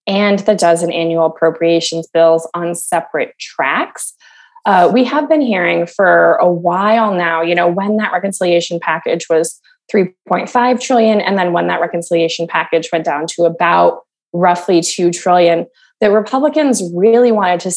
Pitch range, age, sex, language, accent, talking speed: 170-220 Hz, 20-39, female, English, American, 160 wpm